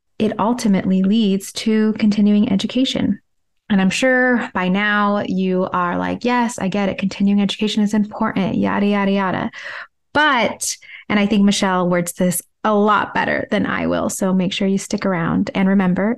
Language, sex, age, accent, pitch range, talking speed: English, female, 20-39, American, 180-220 Hz, 170 wpm